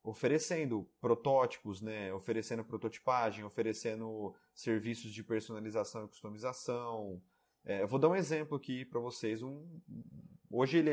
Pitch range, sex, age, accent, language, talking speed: 115-150 Hz, male, 30-49, Brazilian, Portuguese, 125 wpm